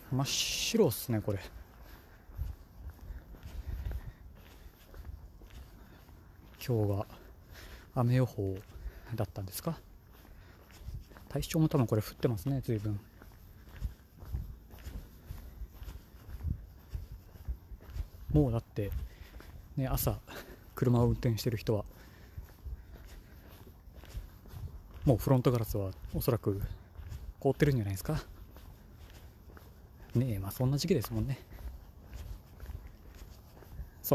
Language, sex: Japanese, male